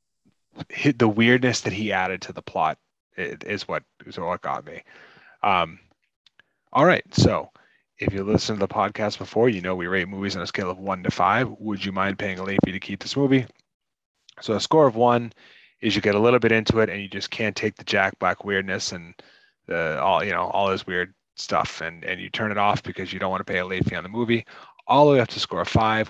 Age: 30-49